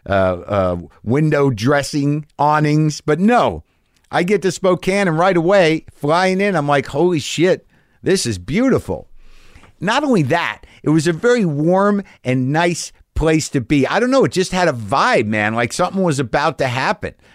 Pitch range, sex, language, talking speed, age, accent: 135-185 Hz, male, English, 175 wpm, 50-69, American